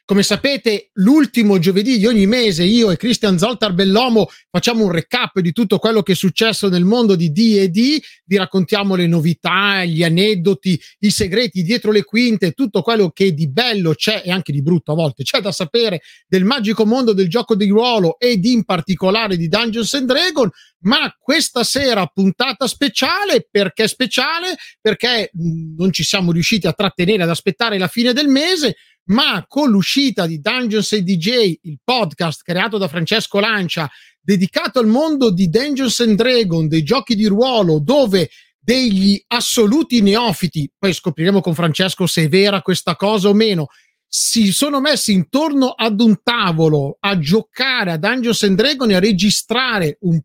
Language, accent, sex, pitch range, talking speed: Italian, native, male, 180-235 Hz, 165 wpm